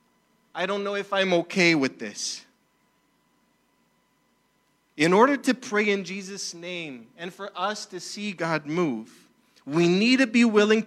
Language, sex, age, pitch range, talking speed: English, male, 40-59, 185-235 Hz, 150 wpm